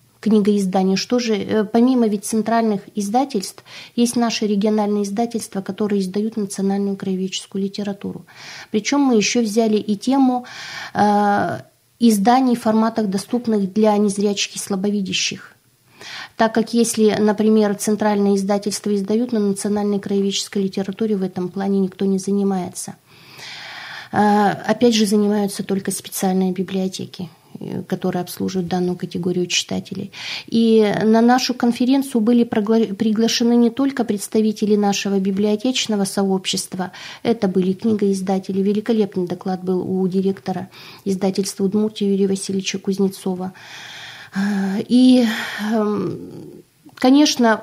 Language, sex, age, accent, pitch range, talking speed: Russian, female, 20-39, native, 195-225 Hz, 110 wpm